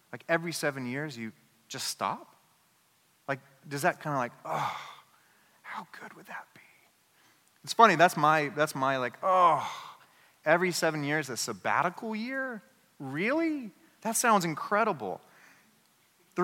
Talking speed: 140 wpm